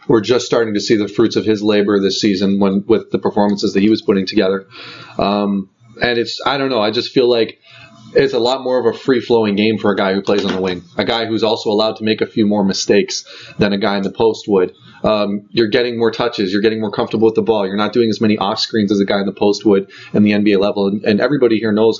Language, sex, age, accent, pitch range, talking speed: English, male, 30-49, American, 105-115 Hz, 265 wpm